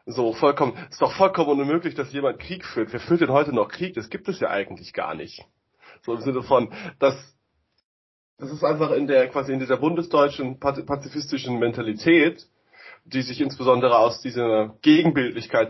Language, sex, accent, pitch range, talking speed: German, male, German, 110-140 Hz, 170 wpm